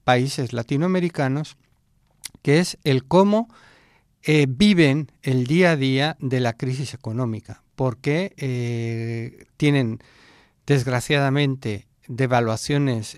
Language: Spanish